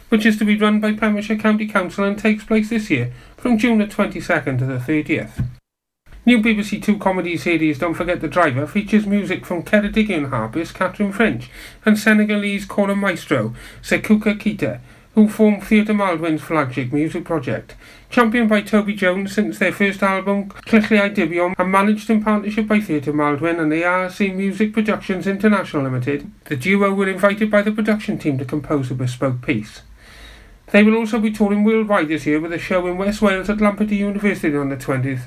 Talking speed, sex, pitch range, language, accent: 180 wpm, male, 150-215 Hz, English, British